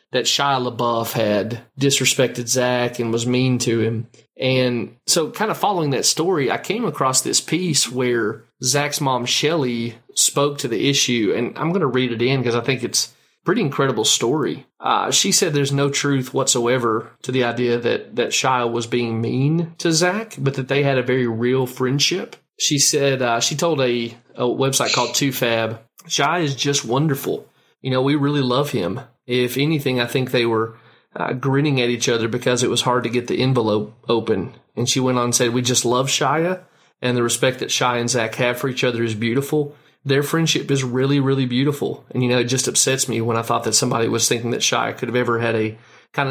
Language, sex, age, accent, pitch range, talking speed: English, male, 30-49, American, 120-140 Hz, 210 wpm